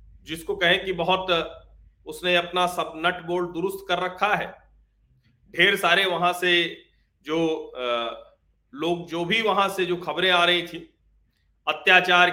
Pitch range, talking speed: 175-240 Hz, 150 wpm